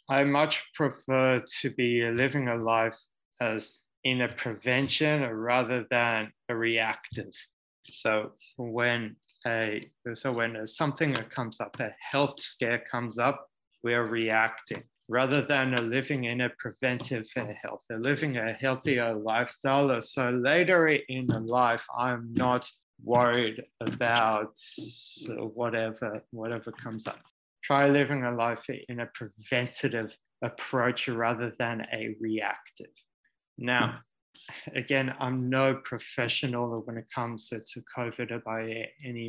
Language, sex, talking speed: English, male, 120 wpm